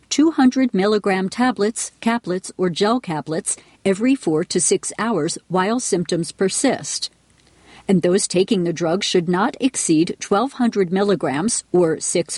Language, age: English, 50-69